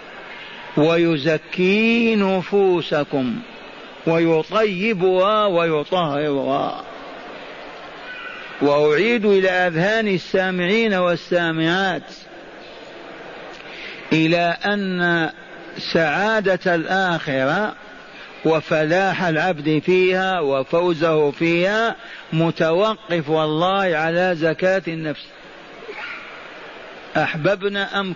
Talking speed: 55 wpm